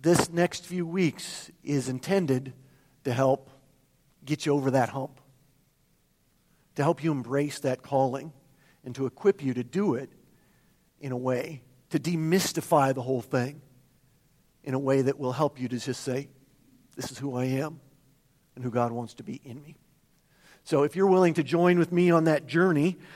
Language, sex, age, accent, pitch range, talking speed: English, male, 50-69, American, 145-225 Hz, 175 wpm